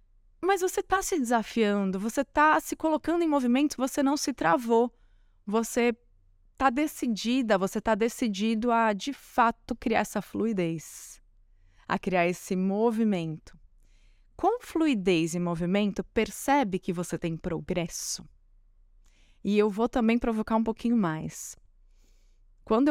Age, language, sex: 20-39, Portuguese, female